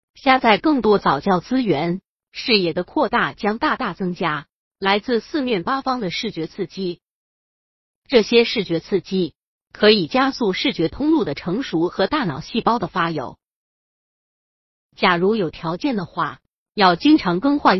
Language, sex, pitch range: Chinese, female, 175-255 Hz